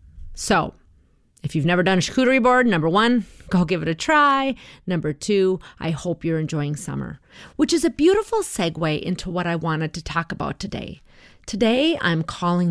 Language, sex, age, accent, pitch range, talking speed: English, female, 30-49, American, 165-260 Hz, 180 wpm